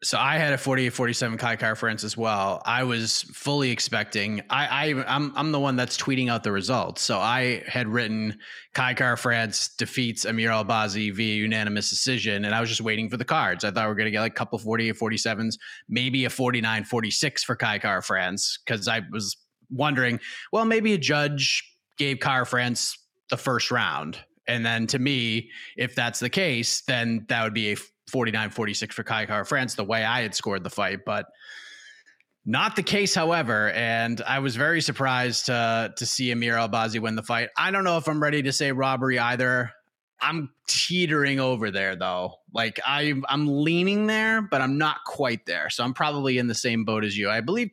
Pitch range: 110-140 Hz